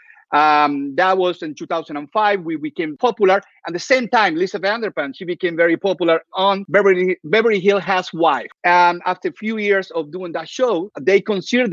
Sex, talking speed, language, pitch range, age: male, 180 wpm, English, 160-215 Hz, 50-69